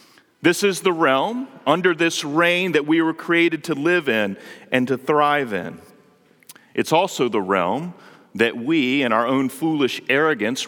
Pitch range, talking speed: 155-210 Hz, 165 wpm